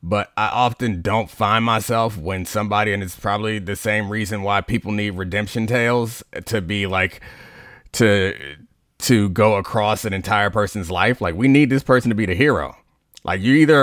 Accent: American